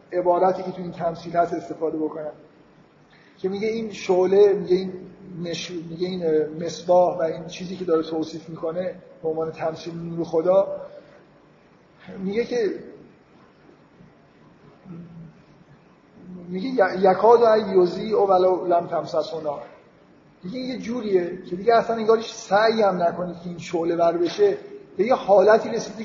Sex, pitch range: male, 170-205 Hz